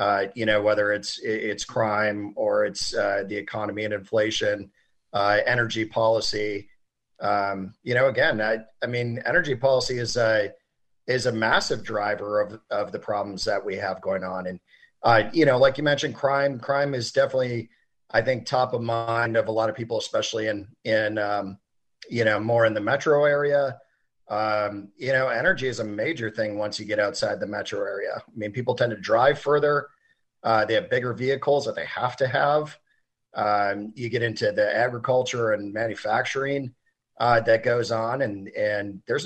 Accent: American